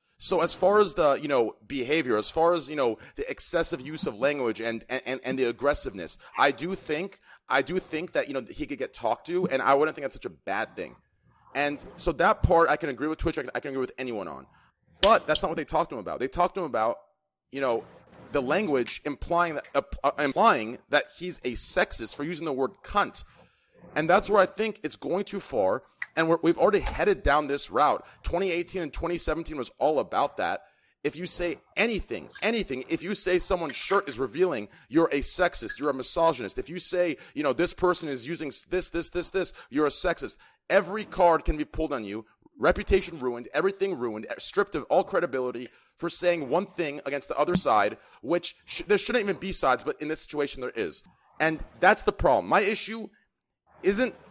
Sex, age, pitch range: male, 30-49, 140-180 Hz